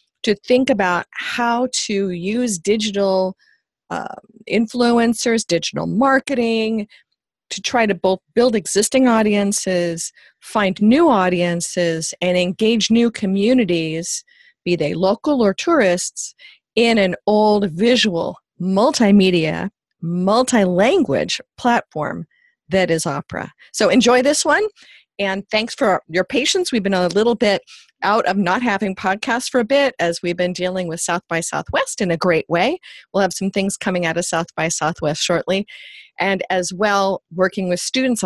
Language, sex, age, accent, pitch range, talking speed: English, female, 40-59, American, 175-235 Hz, 145 wpm